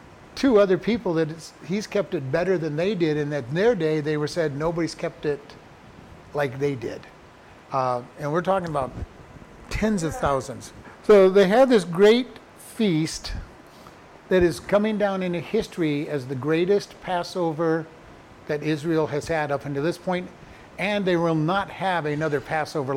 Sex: male